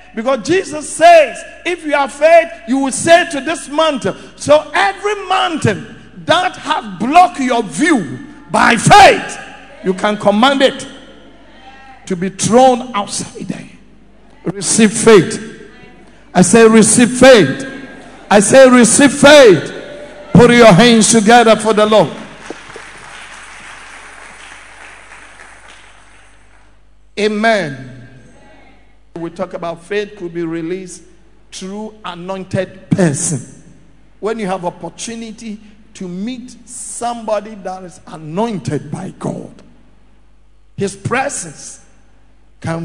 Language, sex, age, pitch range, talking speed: English, male, 60-79, 175-255 Hz, 105 wpm